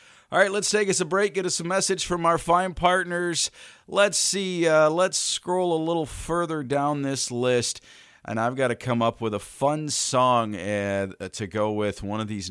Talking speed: 205 wpm